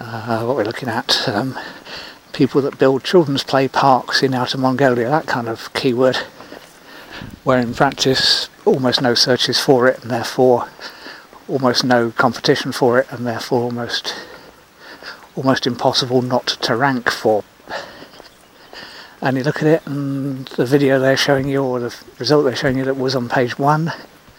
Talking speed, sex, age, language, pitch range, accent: 160 wpm, male, 60-79, English, 130-150 Hz, British